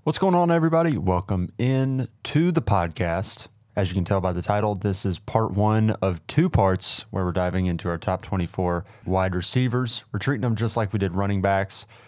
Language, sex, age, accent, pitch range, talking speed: English, male, 30-49, American, 95-115 Hz, 205 wpm